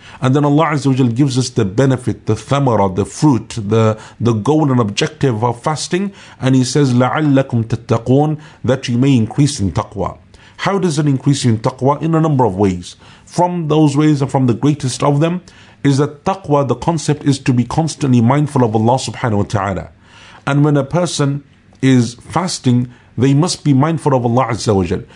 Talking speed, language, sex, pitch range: 185 wpm, English, male, 115-150 Hz